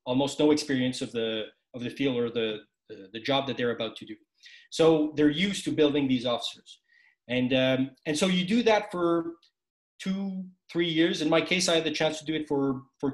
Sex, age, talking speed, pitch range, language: male, 30-49, 220 wpm, 125-165 Hz, English